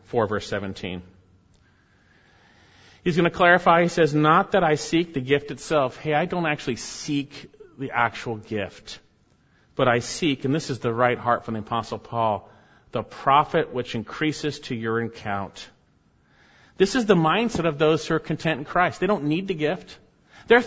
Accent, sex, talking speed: American, male, 175 wpm